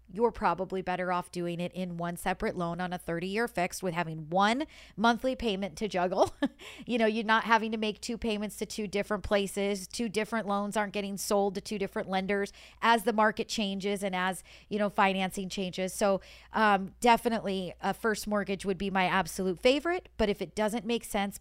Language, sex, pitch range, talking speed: English, female, 185-230 Hz, 200 wpm